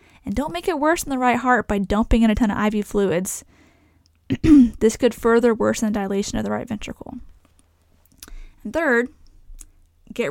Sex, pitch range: female, 200-260 Hz